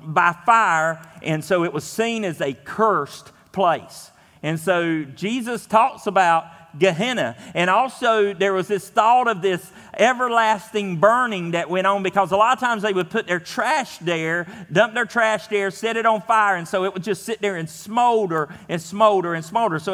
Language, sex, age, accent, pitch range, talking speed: English, male, 40-59, American, 155-210 Hz, 190 wpm